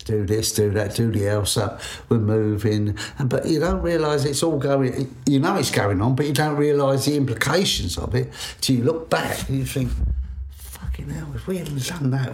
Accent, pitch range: British, 105-145 Hz